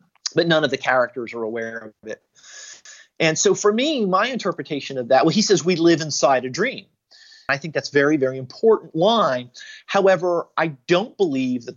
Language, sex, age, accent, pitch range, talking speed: Swedish, male, 30-49, American, 135-200 Hz, 195 wpm